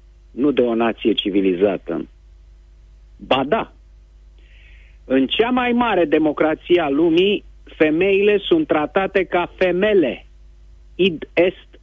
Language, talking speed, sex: Romanian, 100 wpm, male